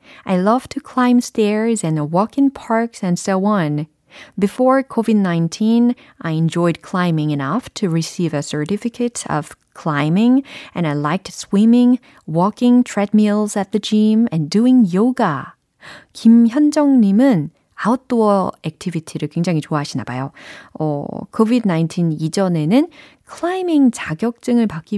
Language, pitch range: Korean, 160-235 Hz